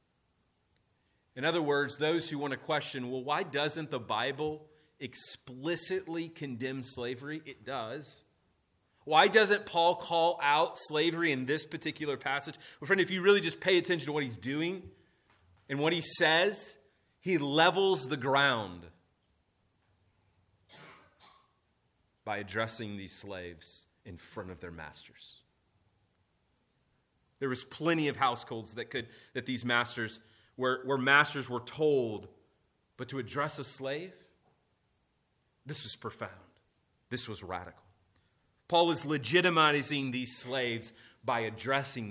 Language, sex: English, male